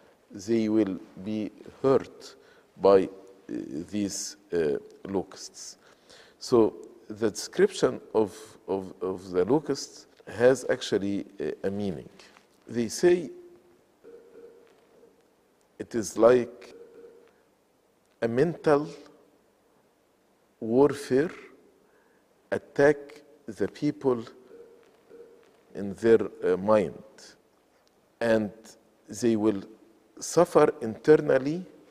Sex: male